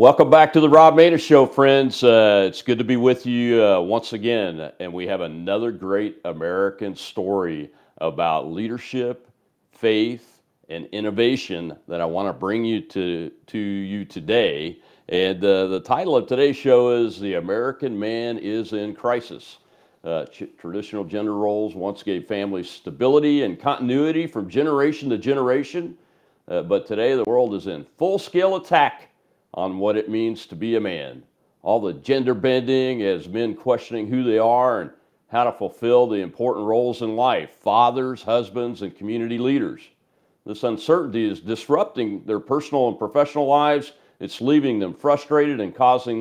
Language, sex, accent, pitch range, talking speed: English, male, American, 105-140 Hz, 160 wpm